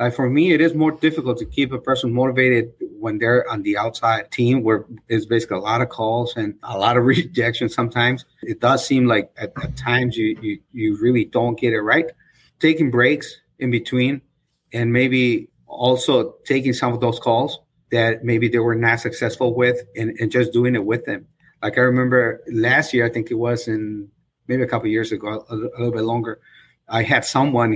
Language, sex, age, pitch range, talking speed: English, male, 30-49, 115-130 Hz, 210 wpm